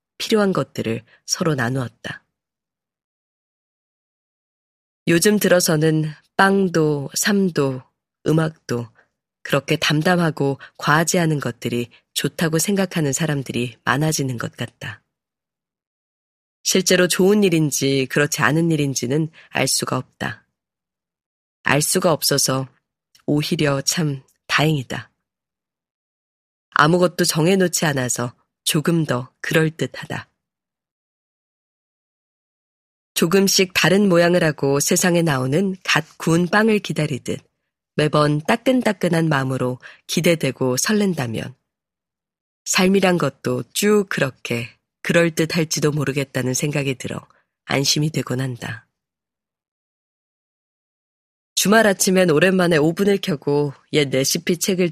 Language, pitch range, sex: Korean, 135-180 Hz, female